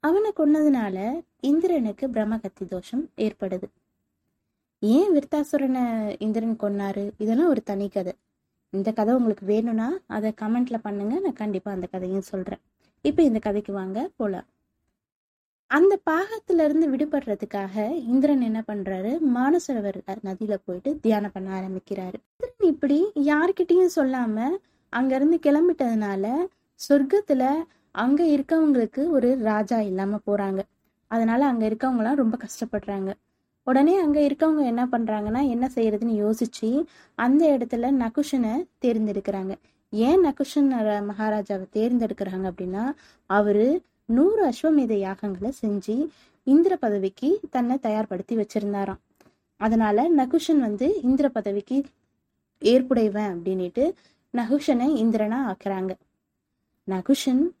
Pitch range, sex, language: 205-290 Hz, female, Tamil